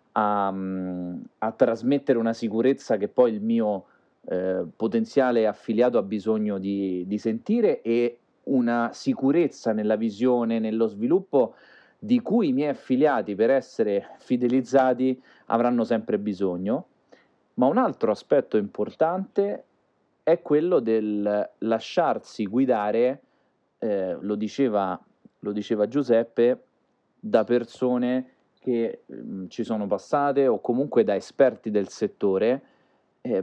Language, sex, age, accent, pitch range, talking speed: Italian, male, 30-49, native, 110-135 Hz, 115 wpm